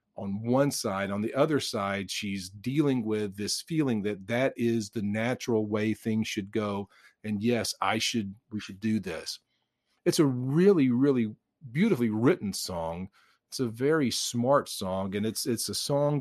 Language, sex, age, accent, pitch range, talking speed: English, male, 40-59, American, 110-140 Hz, 170 wpm